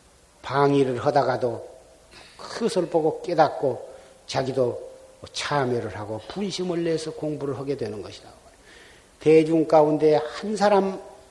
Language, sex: Korean, male